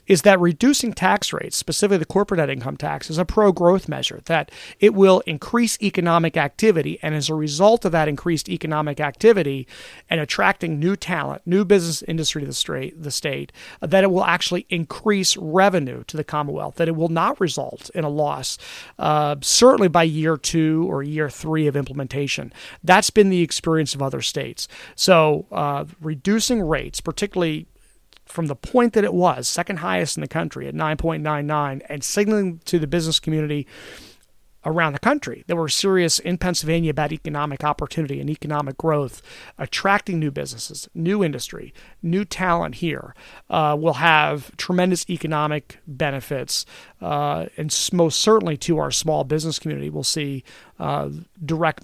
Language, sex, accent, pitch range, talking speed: English, male, American, 150-180 Hz, 160 wpm